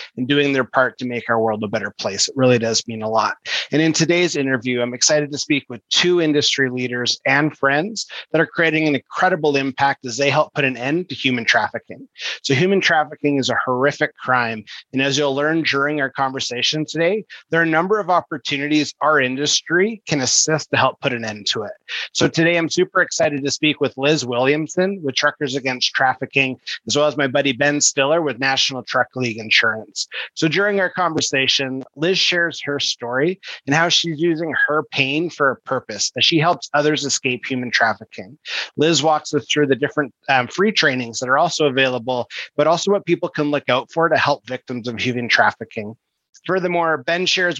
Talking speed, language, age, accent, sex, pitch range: 200 wpm, English, 30-49, American, male, 130-155 Hz